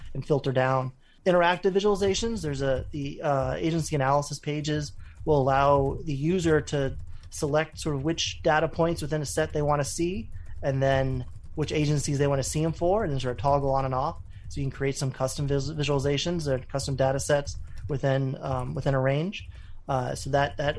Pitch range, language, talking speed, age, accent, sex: 130-160 Hz, English, 195 wpm, 30-49, American, male